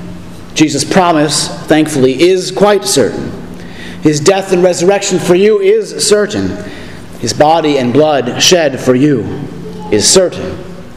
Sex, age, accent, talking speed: male, 40-59, American, 125 wpm